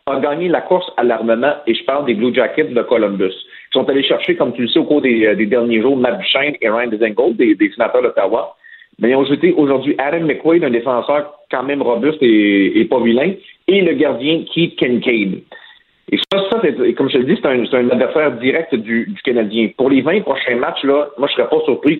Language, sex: French, male